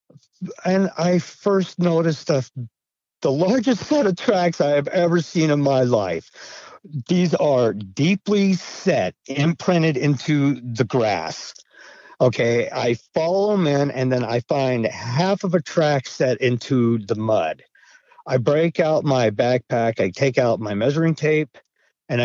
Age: 50-69